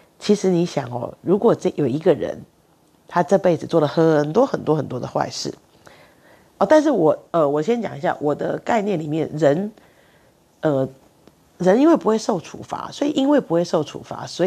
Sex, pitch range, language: female, 150-205 Hz, Chinese